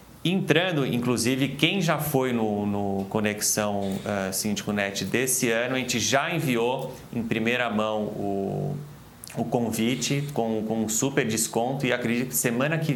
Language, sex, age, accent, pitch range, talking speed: Portuguese, male, 30-49, Brazilian, 110-140 Hz, 155 wpm